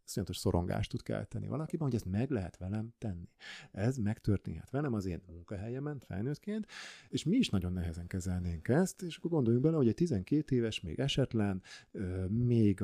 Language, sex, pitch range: Hungarian, male, 95-125 Hz